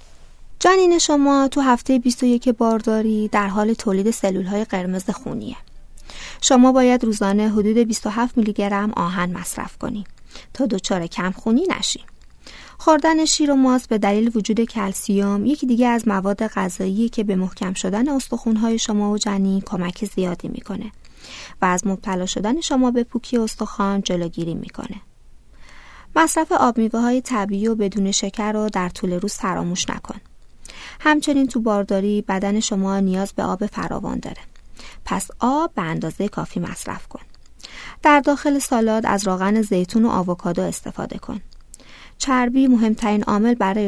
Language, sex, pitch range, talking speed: Persian, female, 195-245 Hz, 145 wpm